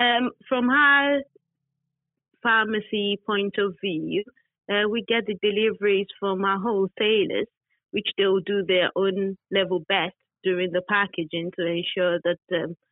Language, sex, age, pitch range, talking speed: English, female, 30-49, 180-225 Hz, 135 wpm